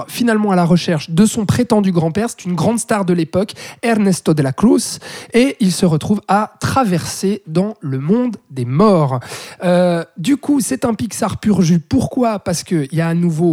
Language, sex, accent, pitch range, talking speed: French, male, French, 160-215 Hz, 195 wpm